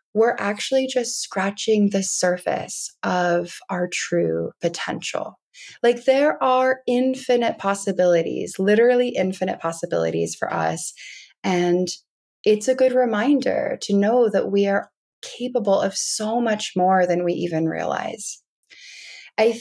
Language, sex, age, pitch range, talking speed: English, female, 20-39, 175-225 Hz, 120 wpm